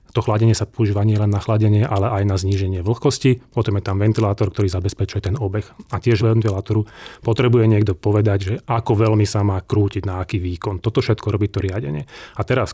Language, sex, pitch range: Slovak, male, 100-115 Hz